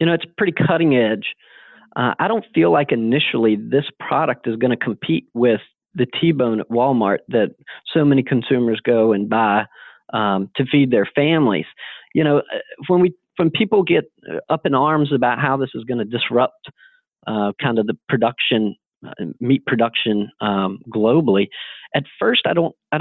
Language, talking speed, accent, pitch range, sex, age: English, 175 wpm, American, 115-150 Hz, male, 40-59